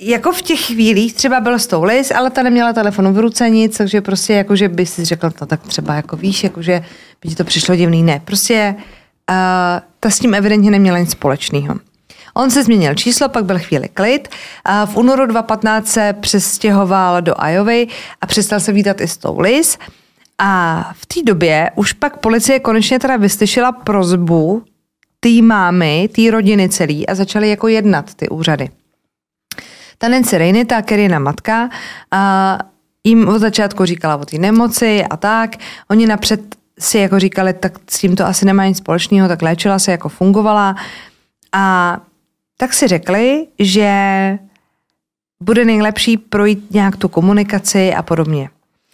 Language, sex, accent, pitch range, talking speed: Czech, female, native, 185-220 Hz, 160 wpm